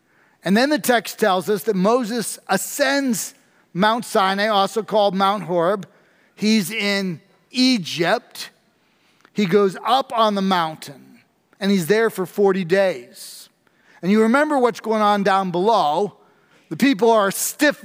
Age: 40-59